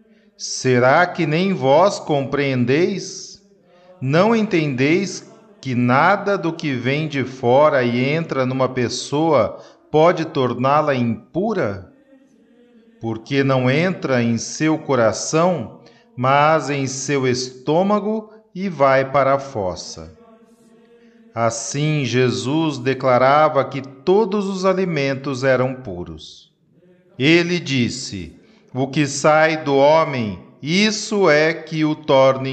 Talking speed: 105 wpm